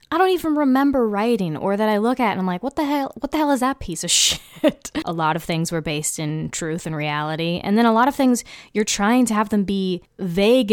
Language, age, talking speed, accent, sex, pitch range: English, 20-39, 265 wpm, American, female, 170-230 Hz